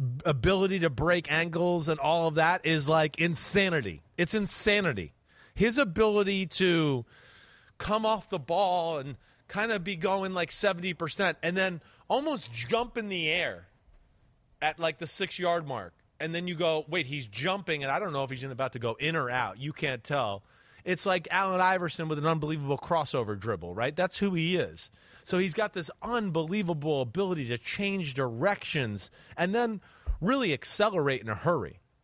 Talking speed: 175 wpm